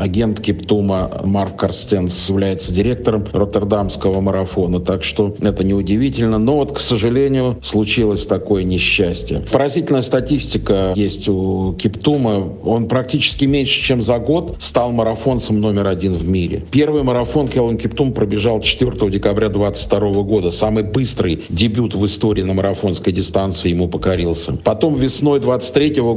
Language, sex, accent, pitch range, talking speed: Russian, male, native, 100-120 Hz, 135 wpm